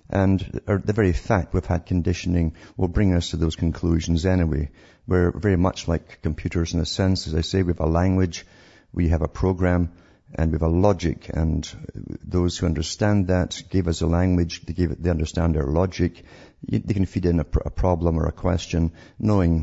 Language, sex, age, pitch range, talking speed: English, male, 50-69, 80-95 Hz, 200 wpm